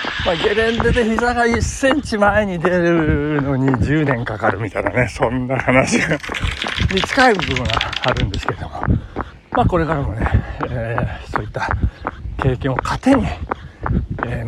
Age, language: 60-79, Japanese